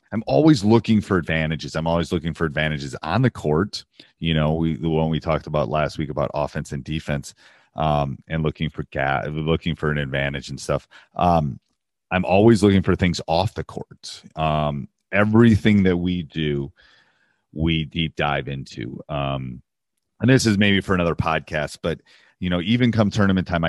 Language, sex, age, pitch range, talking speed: English, male, 30-49, 75-90 Hz, 175 wpm